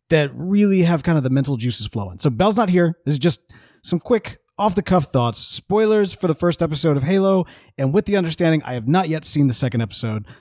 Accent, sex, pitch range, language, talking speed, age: American, male, 150-210 Hz, English, 225 wpm, 30-49